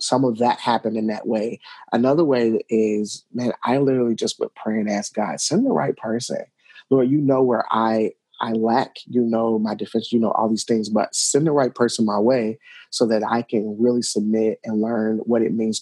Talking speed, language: 215 wpm, English